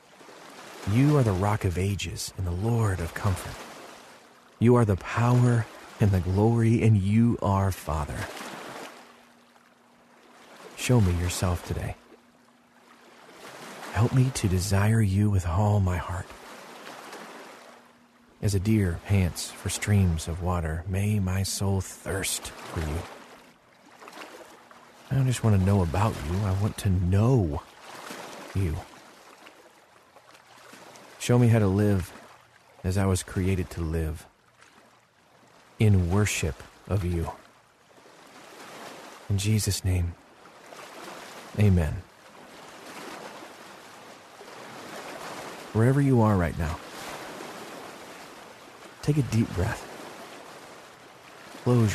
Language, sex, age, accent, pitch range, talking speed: English, male, 40-59, American, 90-110 Hz, 105 wpm